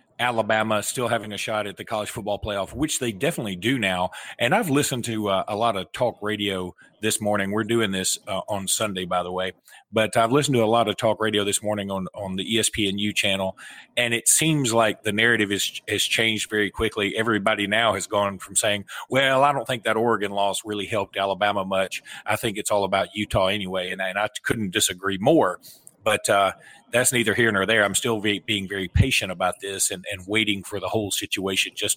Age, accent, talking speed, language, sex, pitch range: 40-59, American, 215 wpm, English, male, 100-115 Hz